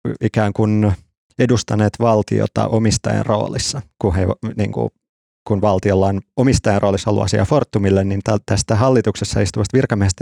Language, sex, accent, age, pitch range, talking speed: Finnish, male, native, 30-49, 100-110 Hz, 125 wpm